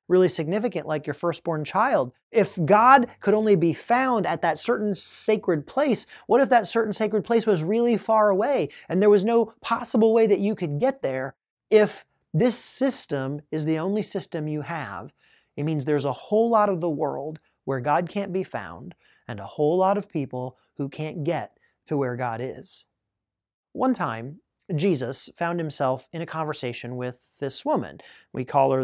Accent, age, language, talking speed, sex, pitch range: American, 30-49, English, 185 wpm, male, 140-205 Hz